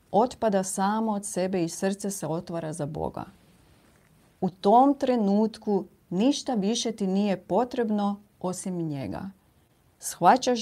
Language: Croatian